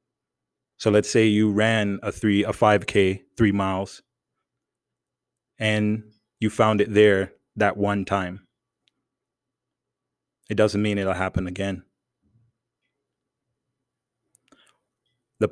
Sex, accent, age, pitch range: male, American, 30-49, 100-115 Hz